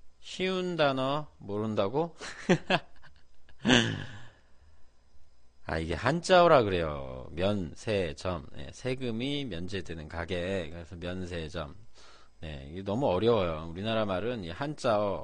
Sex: male